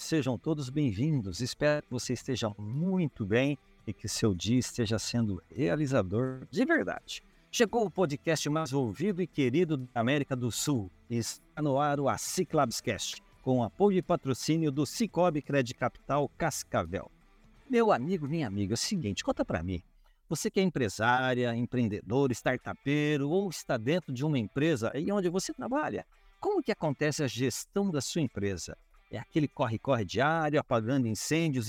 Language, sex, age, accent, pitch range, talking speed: Portuguese, male, 60-79, Brazilian, 120-160 Hz, 155 wpm